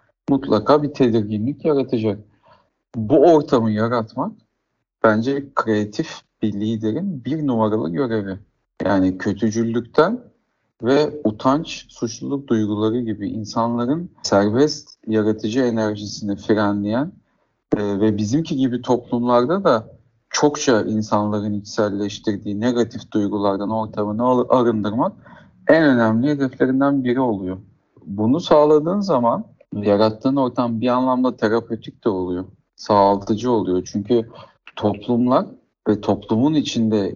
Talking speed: 100 wpm